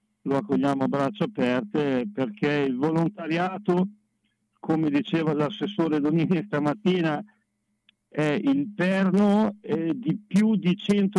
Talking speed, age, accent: 105 wpm, 60-79, native